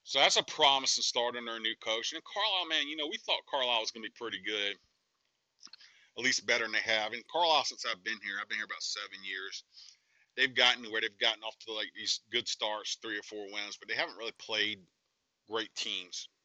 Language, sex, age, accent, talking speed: English, male, 40-59, American, 230 wpm